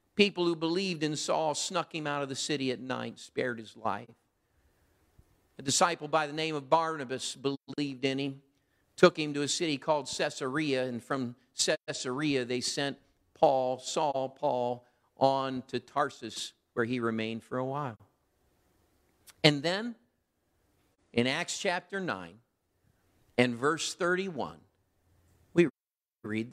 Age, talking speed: 50-69, 140 wpm